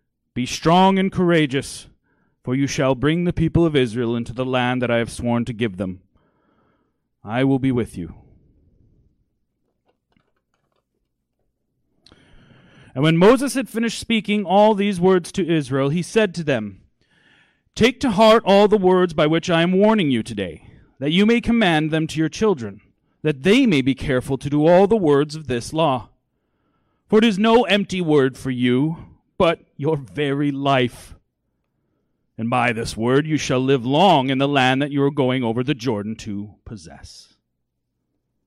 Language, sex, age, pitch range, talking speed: English, male, 30-49, 115-160 Hz, 165 wpm